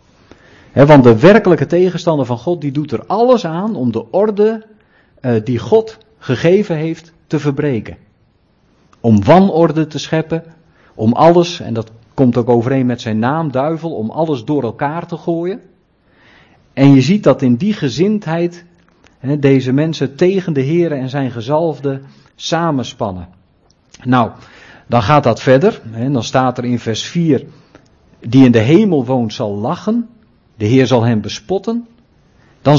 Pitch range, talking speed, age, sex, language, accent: 120-165 Hz, 155 wpm, 50-69, male, Dutch, Dutch